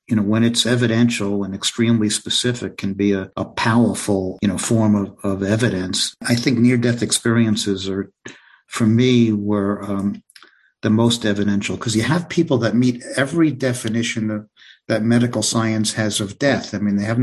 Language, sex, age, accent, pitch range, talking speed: English, male, 50-69, American, 105-120 Hz, 170 wpm